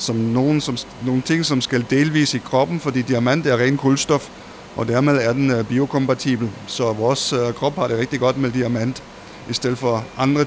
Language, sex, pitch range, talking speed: Danish, male, 115-135 Hz, 185 wpm